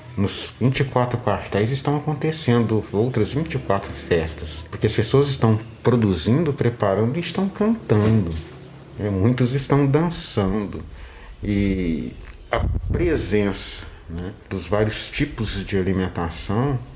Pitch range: 85-125 Hz